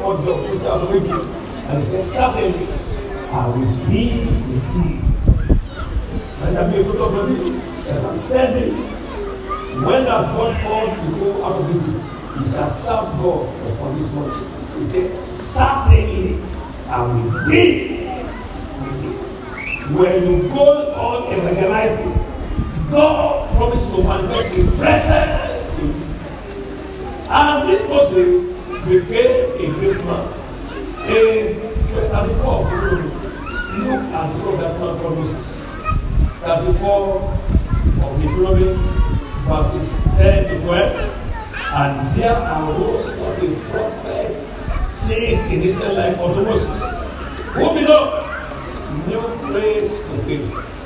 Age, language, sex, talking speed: 50-69, English, male, 120 wpm